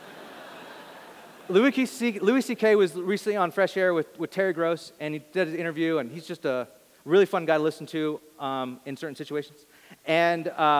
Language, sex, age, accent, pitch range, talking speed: English, male, 30-49, American, 140-185 Hz, 185 wpm